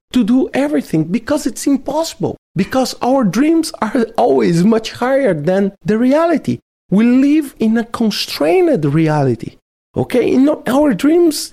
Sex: male